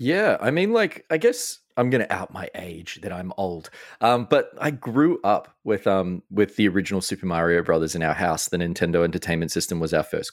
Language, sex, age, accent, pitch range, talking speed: English, male, 20-39, Australian, 85-100 Hz, 220 wpm